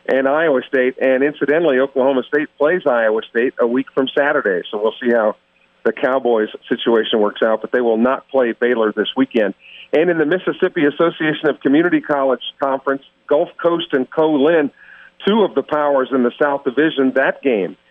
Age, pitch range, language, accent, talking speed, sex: 50-69, 120-150 Hz, English, American, 180 wpm, male